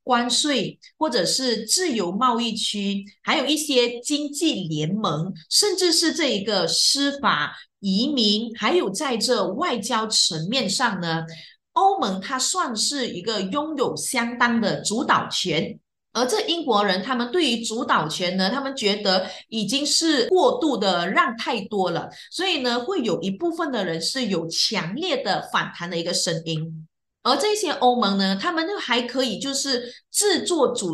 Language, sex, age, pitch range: Chinese, female, 30-49, 190-270 Hz